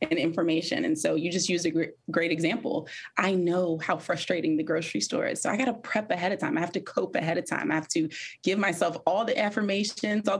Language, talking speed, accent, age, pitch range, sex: English, 235 wpm, American, 20-39, 165-215 Hz, female